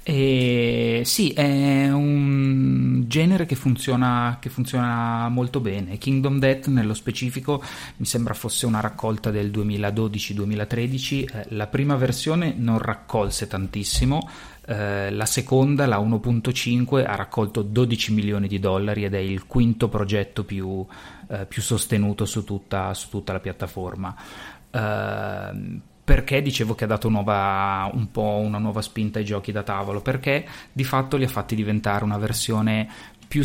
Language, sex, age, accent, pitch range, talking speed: Italian, male, 30-49, native, 100-125 Hz, 145 wpm